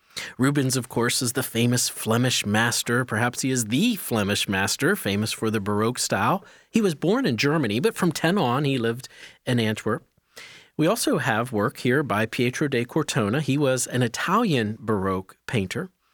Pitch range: 110-155 Hz